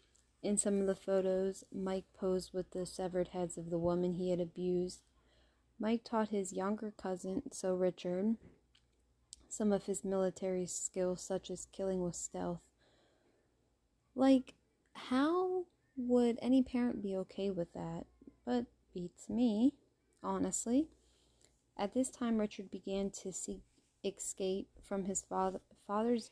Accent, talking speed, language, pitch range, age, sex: American, 130 wpm, English, 180-215 Hz, 20-39, female